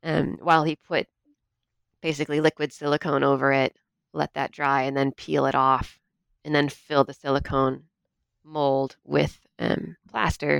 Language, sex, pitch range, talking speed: English, female, 135-160 Hz, 145 wpm